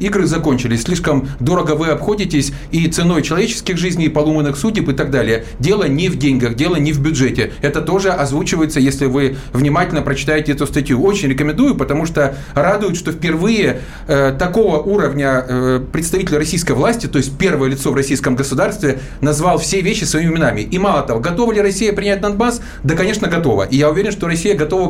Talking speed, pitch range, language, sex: 180 wpm, 145-190 Hz, Russian, male